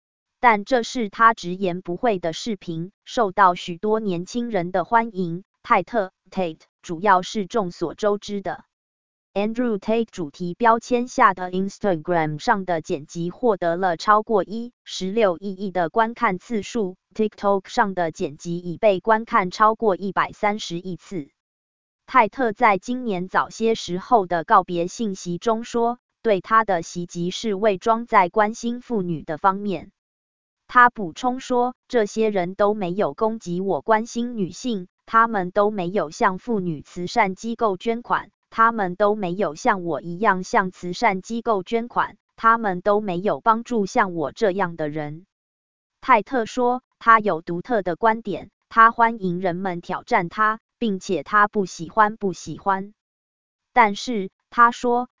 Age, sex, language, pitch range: 20-39, female, English, 180-225 Hz